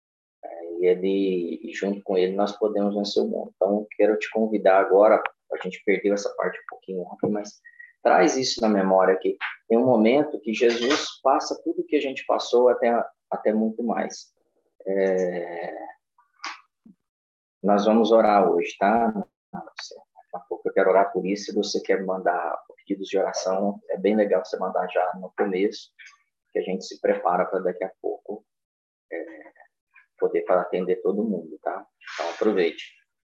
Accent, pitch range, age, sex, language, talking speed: Brazilian, 100-135 Hz, 20-39, male, Portuguese, 160 wpm